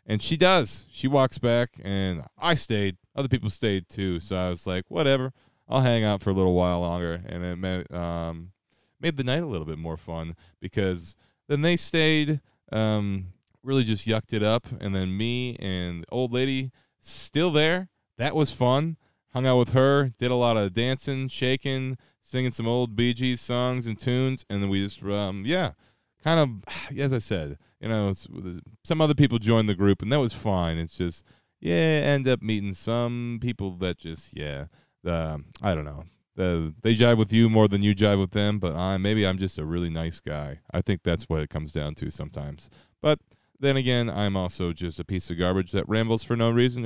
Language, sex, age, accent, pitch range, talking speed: English, male, 20-39, American, 90-125 Hz, 205 wpm